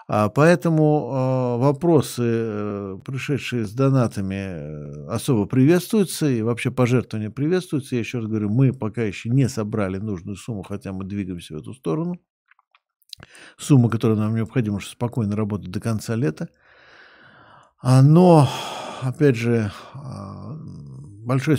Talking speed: 115 wpm